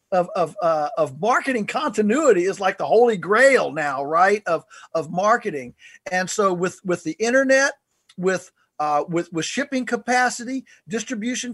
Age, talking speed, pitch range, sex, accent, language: 50-69, 150 wpm, 165-220 Hz, male, American, English